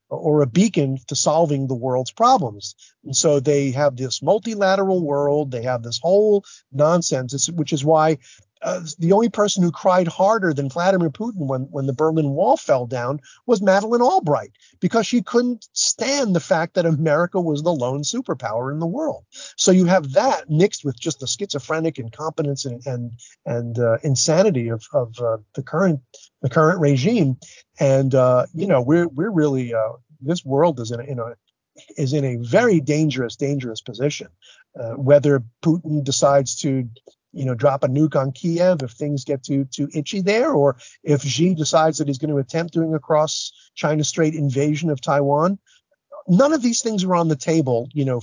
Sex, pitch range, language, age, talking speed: male, 130-175 Hz, English, 50-69, 185 wpm